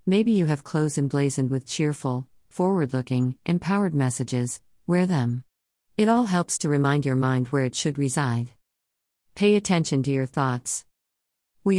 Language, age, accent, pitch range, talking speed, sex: English, 50-69, American, 130-165 Hz, 150 wpm, female